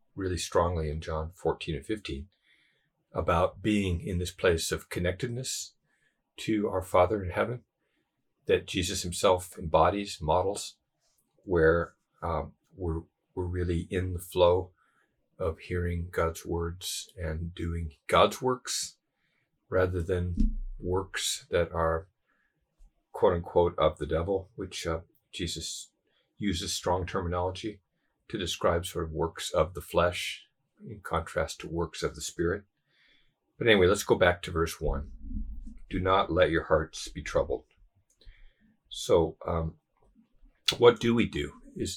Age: 50-69